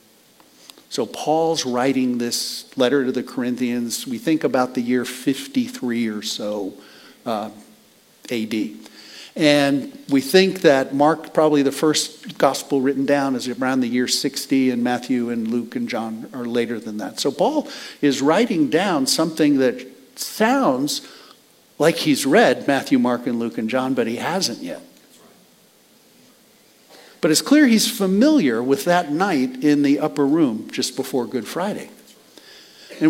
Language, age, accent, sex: English, 50-69, American, male